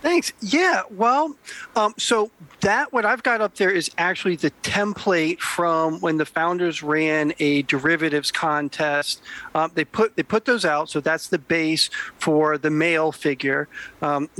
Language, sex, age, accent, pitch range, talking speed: English, male, 40-59, American, 155-200 Hz, 165 wpm